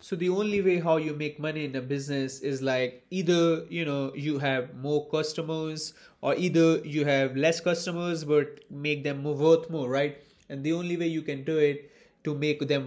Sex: male